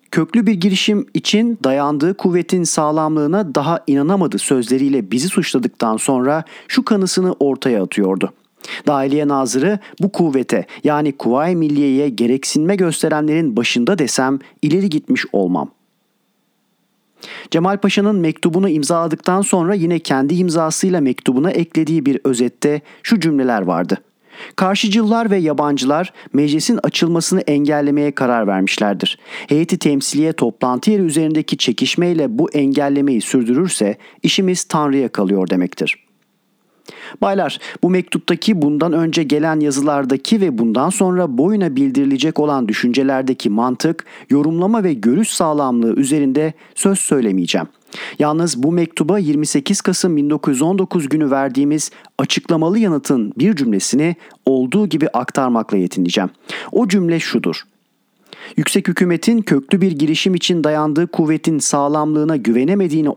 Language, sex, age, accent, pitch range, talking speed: Turkish, male, 40-59, native, 140-185 Hz, 110 wpm